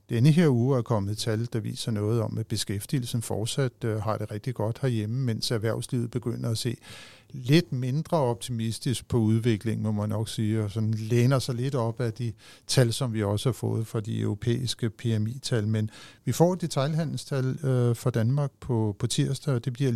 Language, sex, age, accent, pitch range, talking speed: Danish, male, 50-69, native, 110-125 Hz, 185 wpm